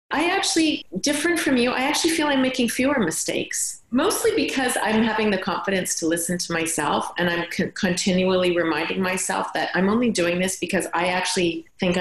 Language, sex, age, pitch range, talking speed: English, female, 30-49, 165-215 Hz, 185 wpm